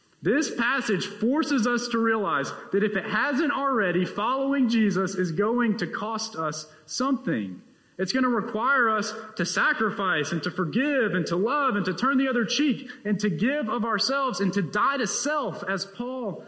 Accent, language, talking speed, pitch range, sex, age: American, English, 180 wpm, 190-250 Hz, male, 30-49